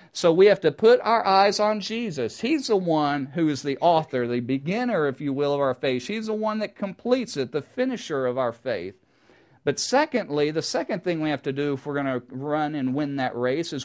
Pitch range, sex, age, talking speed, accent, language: 125-180 Hz, male, 50-69, 235 wpm, American, English